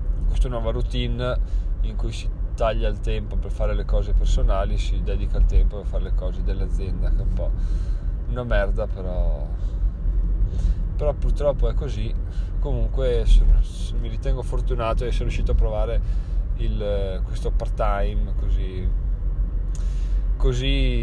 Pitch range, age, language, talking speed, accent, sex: 90-110 Hz, 20-39, Italian, 145 wpm, native, male